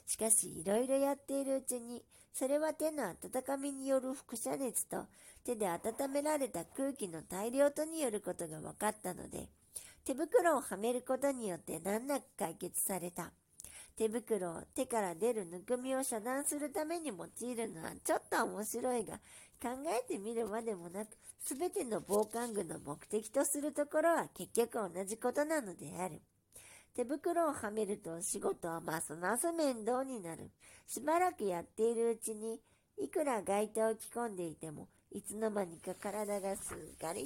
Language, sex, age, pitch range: Japanese, male, 50-69, 195-275 Hz